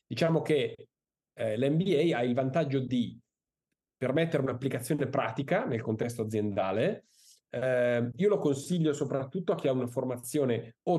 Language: Italian